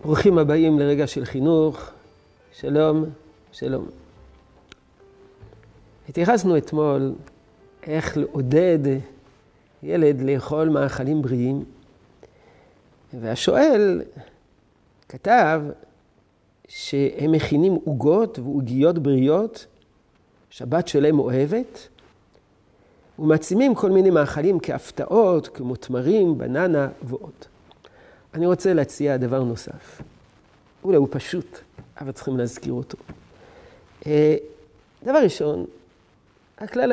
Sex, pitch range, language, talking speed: male, 135-190 Hz, Hebrew, 80 wpm